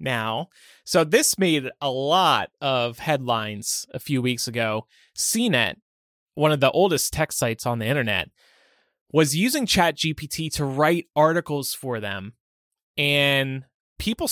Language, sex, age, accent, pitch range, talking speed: English, male, 30-49, American, 125-170 Hz, 140 wpm